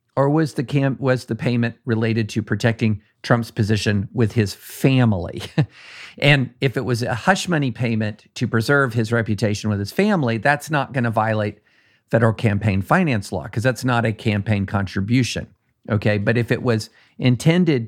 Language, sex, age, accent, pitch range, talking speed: English, male, 50-69, American, 110-135 Hz, 170 wpm